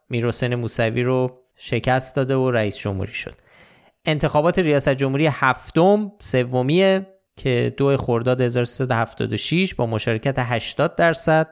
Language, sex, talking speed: Persian, male, 115 wpm